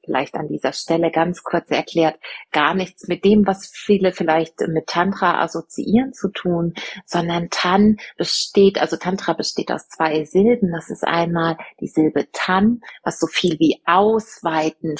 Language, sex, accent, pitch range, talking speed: German, female, German, 165-195 Hz, 155 wpm